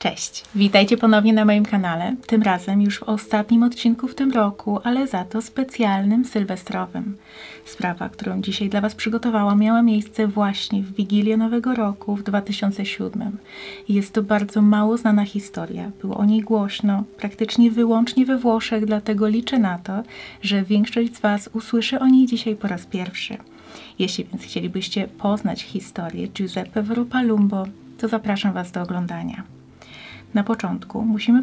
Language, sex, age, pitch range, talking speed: Polish, female, 30-49, 200-225 Hz, 150 wpm